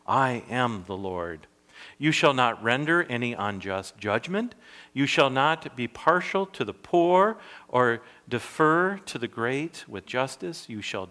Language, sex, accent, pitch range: English, male, American, 105-150 Hz